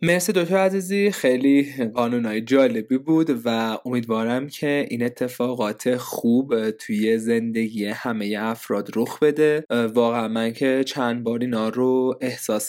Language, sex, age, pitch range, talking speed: Persian, male, 20-39, 115-145 Hz, 125 wpm